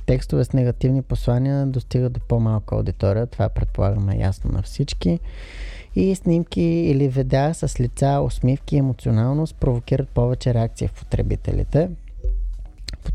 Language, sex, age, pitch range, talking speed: Bulgarian, male, 20-39, 105-135 Hz, 130 wpm